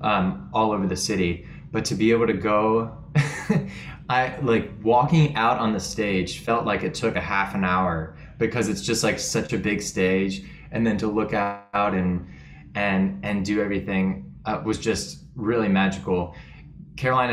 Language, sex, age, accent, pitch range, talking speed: English, male, 20-39, American, 90-115 Hz, 175 wpm